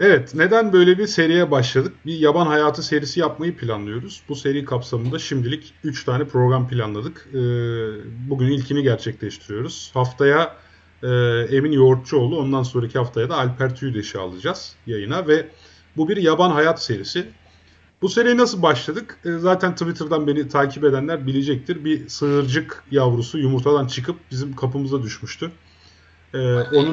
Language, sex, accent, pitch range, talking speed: Turkish, male, native, 120-150 Hz, 130 wpm